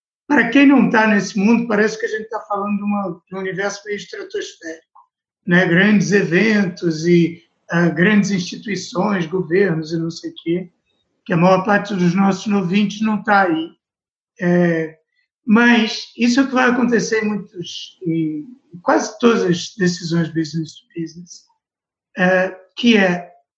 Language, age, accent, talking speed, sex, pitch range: Portuguese, 60-79, Brazilian, 145 wpm, male, 175-220 Hz